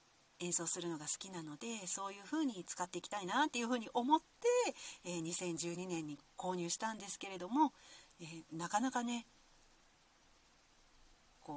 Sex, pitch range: female, 175-260 Hz